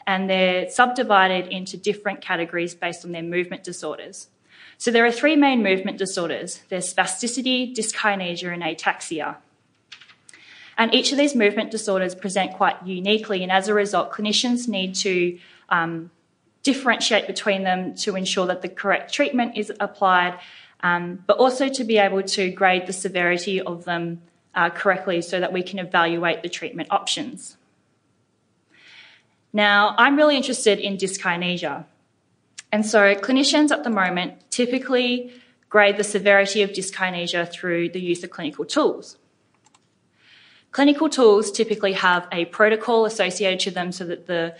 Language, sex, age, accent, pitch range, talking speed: English, female, 20-39, Australian, 180-220 Hz, 145 wpm